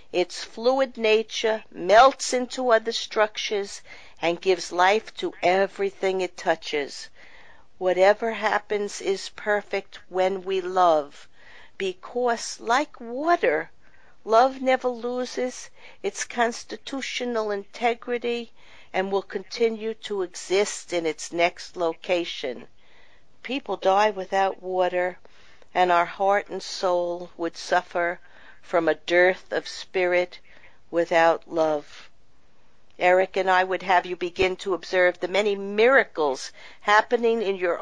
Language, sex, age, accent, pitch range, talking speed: English, female, 50-69, American, 180-225 Hz, 115 wpm